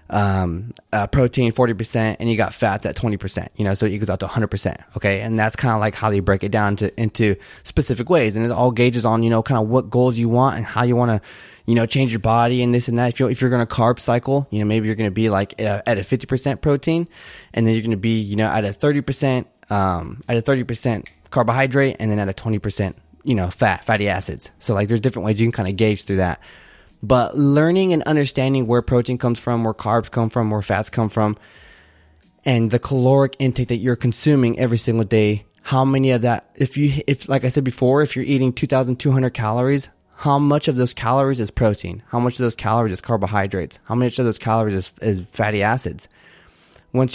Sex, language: male, English